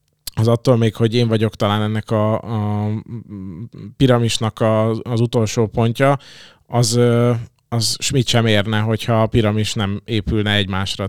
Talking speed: 140 wpm